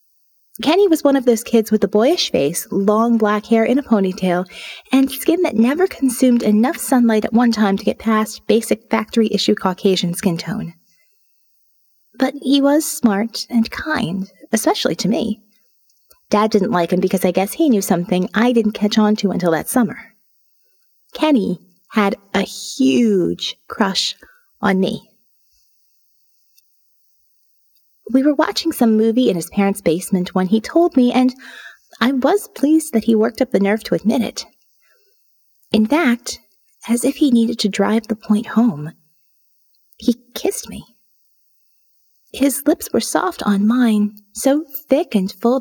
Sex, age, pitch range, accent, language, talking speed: female, 30-49, 205-275 Hz, American, English, 155 wpm